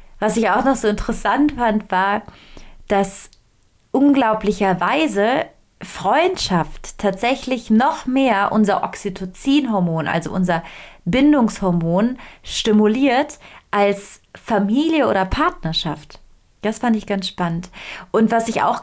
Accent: German